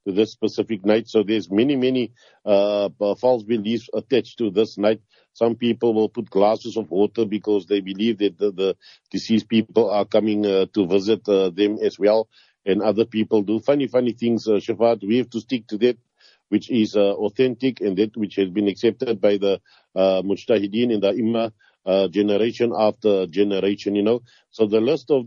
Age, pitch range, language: 50-69, 105-120 Hz, English